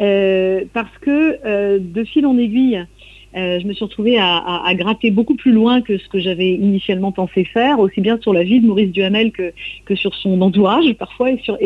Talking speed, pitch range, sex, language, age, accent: 220 wpm, 195-250 Hz, female, French, 50-69, French